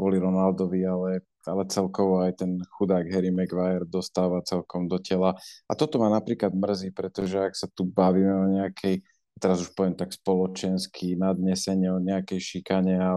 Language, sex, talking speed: Slovak, male, 165 wpm